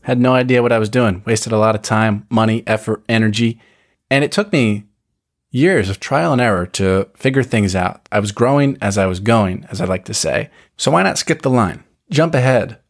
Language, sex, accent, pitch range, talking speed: English, male, American, 100-120 Hz, 225 wpm